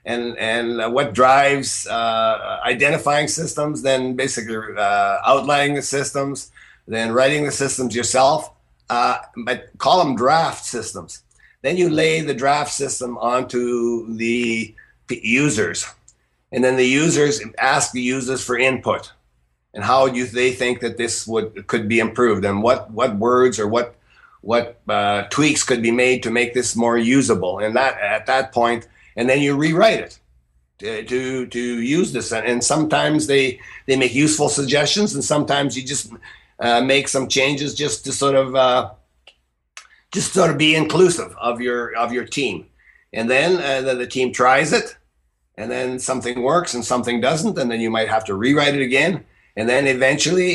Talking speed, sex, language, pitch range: 170 wpm, male, English, 115-140 Hz